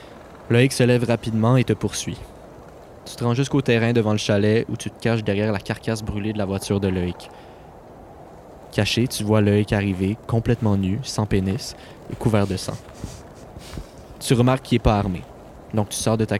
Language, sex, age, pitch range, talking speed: French, male, 20-39, 105-120 Hz, 190 wpm